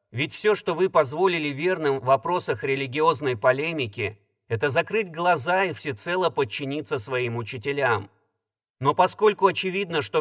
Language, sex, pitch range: Russian, male, 135-185 Hz